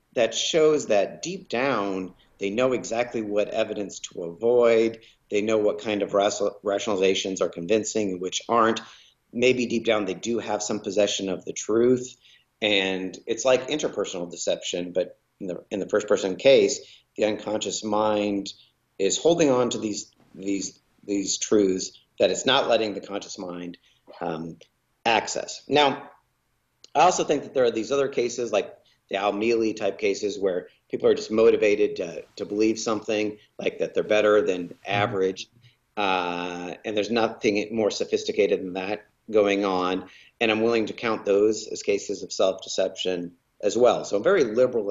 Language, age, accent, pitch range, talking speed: English, 40-59, American, 100-135 Hz, 165 wpm